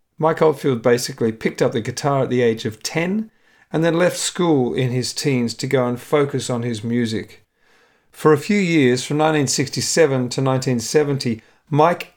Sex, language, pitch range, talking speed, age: male, English, 125-160 Hz, 175 wpm, 40-59